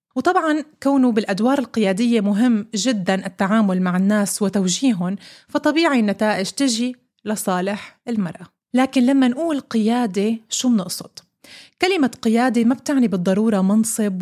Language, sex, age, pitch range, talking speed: Arabic, female, 30-49, 195-240 Hz, 115 wpm